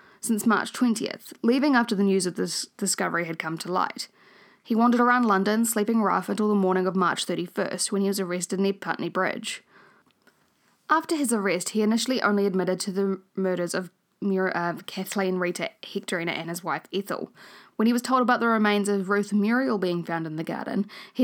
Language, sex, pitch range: English, female, 185-220 Hz